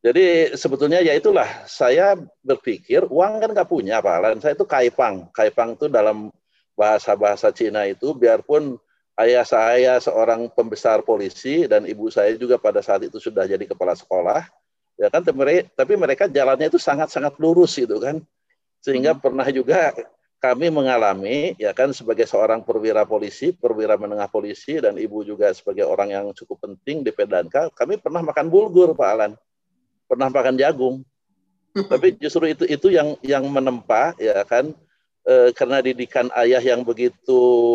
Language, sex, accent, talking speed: Indonesian, male, native, 150 wpm